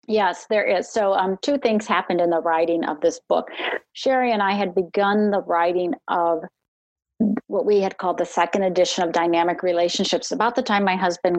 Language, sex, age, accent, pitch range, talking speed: English, female, 40-59, American, 180-225 Hz, 195 wpm